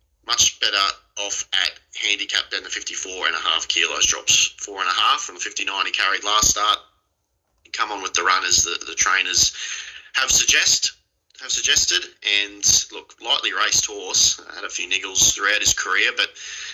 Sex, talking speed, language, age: male, 180 wpm, English, 30-49